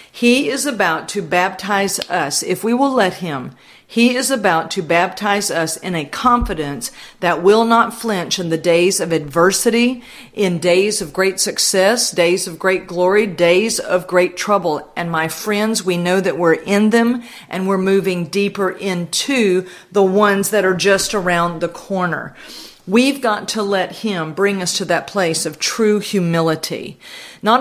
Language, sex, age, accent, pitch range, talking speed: English, female, 50-69, American, 170-210 Hz, 170 wpm